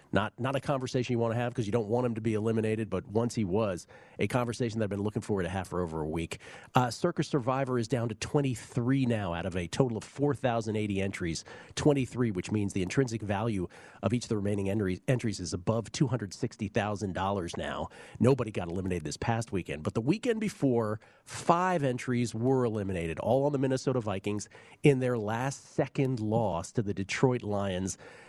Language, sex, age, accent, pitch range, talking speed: English, male, 40-59, American, 100-130 Hz, 195 wpm